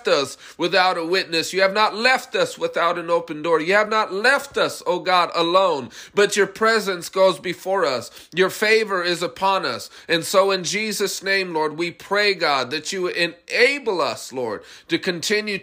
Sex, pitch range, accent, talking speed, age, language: male, 155-190 Hz, American, 185 wpm, 30-49, English